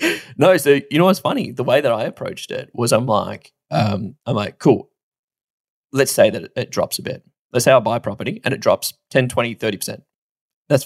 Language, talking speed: English, 220 wpm